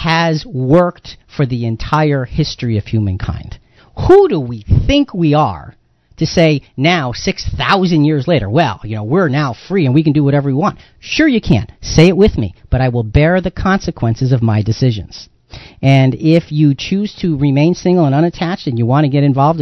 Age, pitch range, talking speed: 40-59, 125-175 Hz, 195 wpm